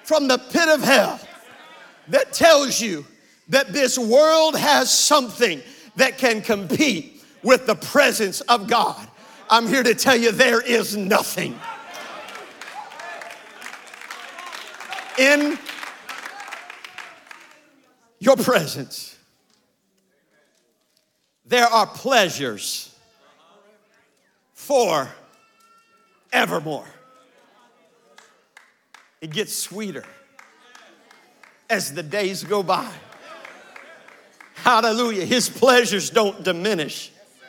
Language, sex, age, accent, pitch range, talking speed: English, male, 50-69, American, 225-285 Hz, 80 wpm